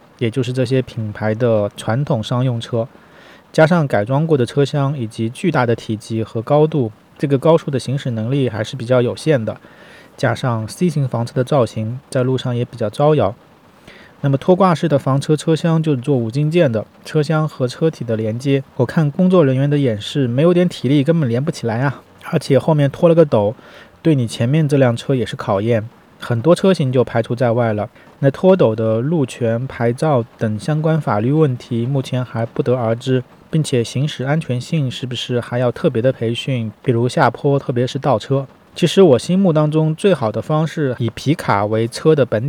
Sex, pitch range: male, 115-150 Hz